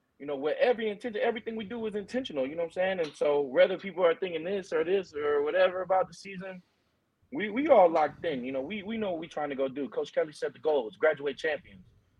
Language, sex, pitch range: English, male, 135-190 Hz